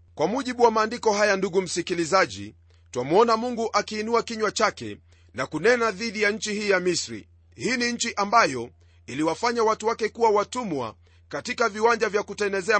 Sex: male